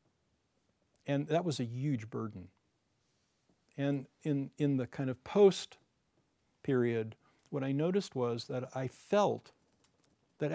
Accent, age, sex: American, 50-69, male